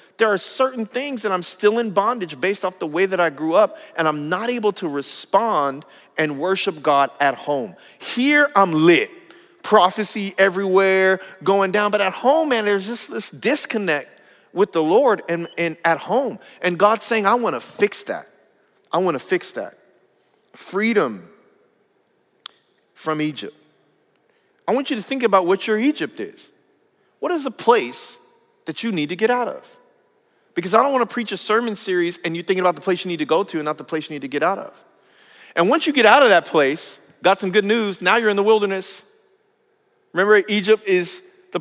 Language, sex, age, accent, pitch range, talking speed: English, male, 40-59, American, 170-240 Hz, 200 wpm